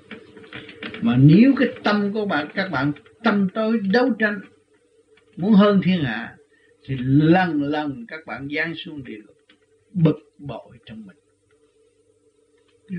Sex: male